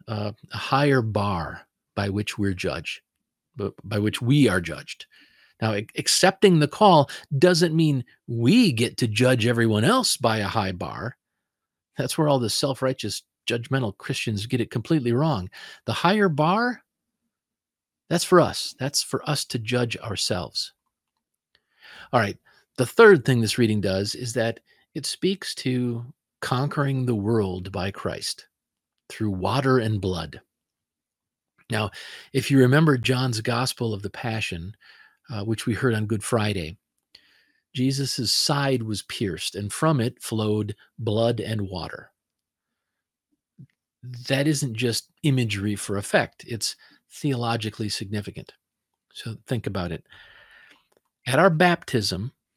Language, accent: English, American